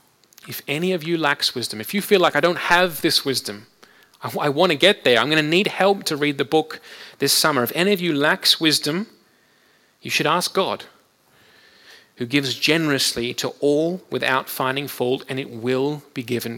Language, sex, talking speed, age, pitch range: English, male, 195 wpm, 30-49, 130-185 Hz